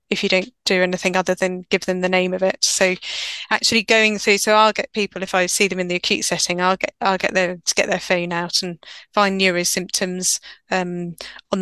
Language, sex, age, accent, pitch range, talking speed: English, female, 20-39, British, 190-220 Hz, 225 wpm